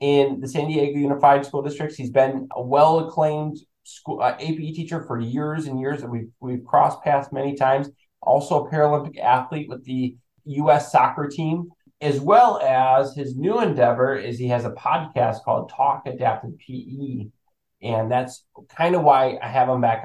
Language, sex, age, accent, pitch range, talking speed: English, male, 20-39, American, 125-150 Hz, 180 wpm